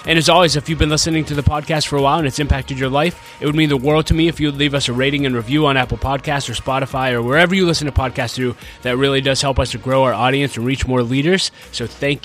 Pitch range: 130-160 Hz